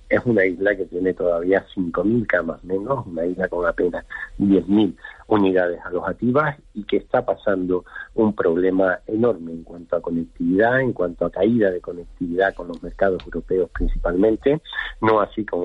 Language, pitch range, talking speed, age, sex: Spanish, 90-105 Hz, 155 wpm, 50-69, male